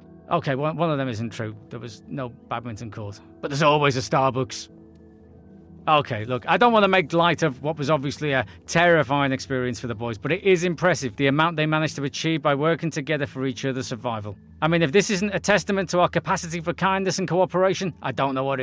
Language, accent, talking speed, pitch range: English, British, 220 wpm, 140-180 Hz